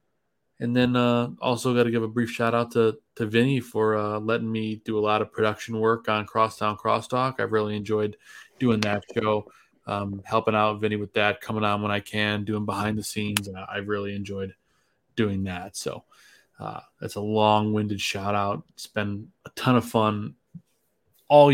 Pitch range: 105-115 Hz